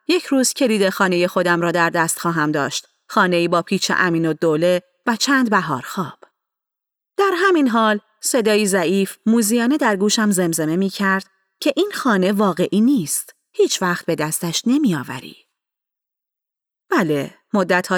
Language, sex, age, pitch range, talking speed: Persian, female, 30-49, 180-245 Hz, 140 wpm